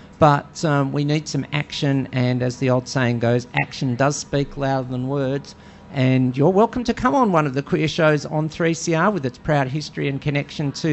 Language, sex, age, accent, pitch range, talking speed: English, male, 50-69, Australian, 135-170 Hz, 210 wpm